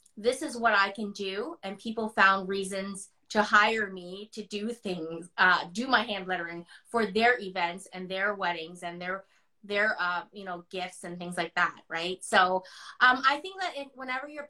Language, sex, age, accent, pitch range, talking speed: English, female, 20-39, American, 195-245 Hz, 195 wpm